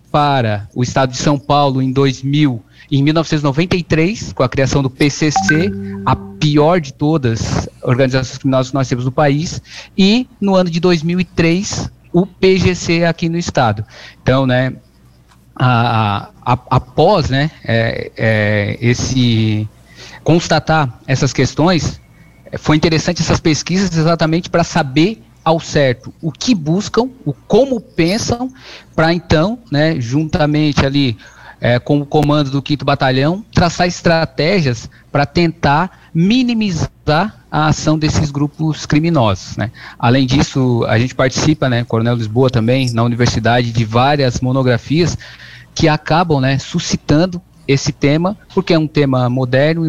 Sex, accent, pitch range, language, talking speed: male, Brazilian, 130-165 Hz, Portuguese, 130 wpm